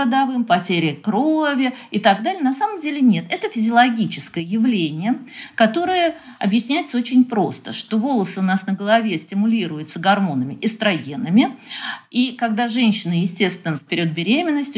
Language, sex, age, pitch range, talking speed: Russian, female, 50-69, 195-255 Hz, 135 wpm